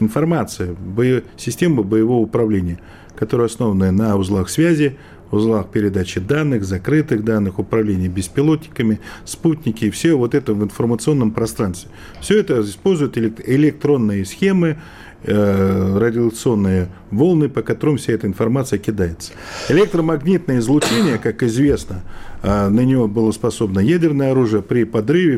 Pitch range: 100-140 Hz